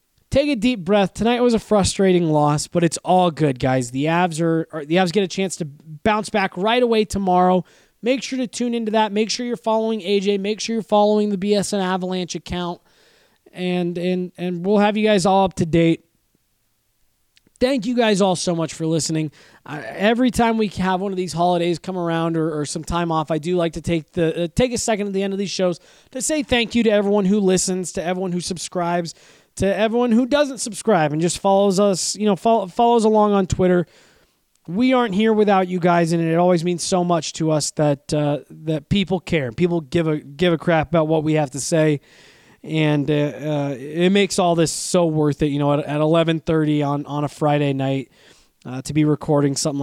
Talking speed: 220 wpm